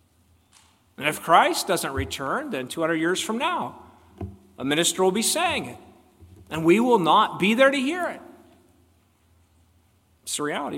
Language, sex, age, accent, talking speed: English, male, 50-69, American, 155 wpm